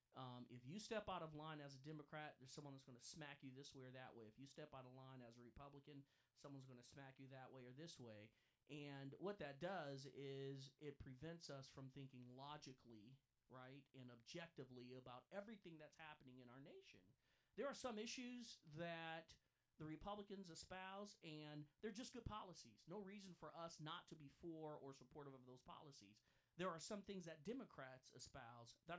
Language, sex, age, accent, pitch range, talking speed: English, male, 40-59, American, 130-170 Hz, 200 wpm